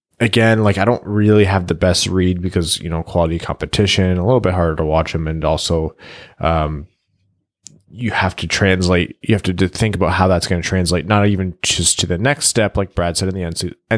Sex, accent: male, American